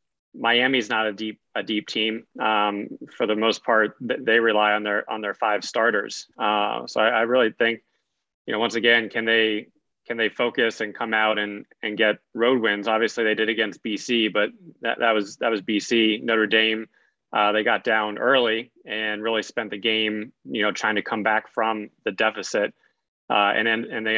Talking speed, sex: 200 wpm, male